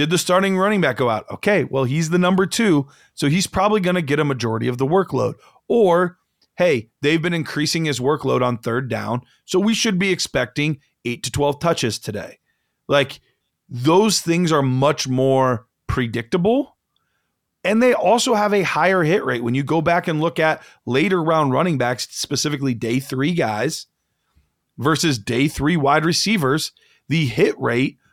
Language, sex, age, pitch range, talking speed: English, male, 40-59, 135-190 Hz, 175 wpm